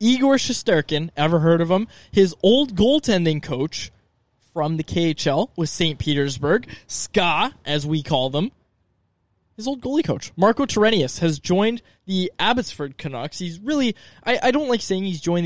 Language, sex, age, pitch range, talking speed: English, male, 20-39, 150-195 Hz, 160 wpm